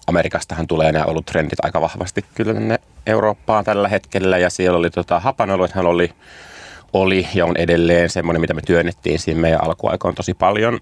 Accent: native